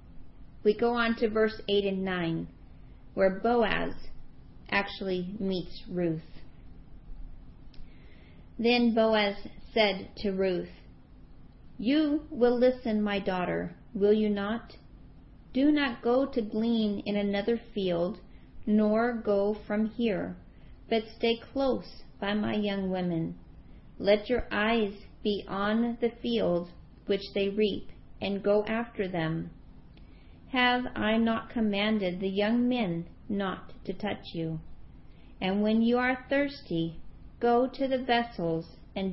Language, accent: English, American